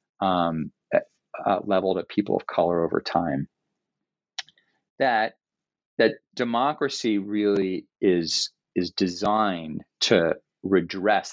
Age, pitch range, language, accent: 30-49, 85-100 Hz, English, American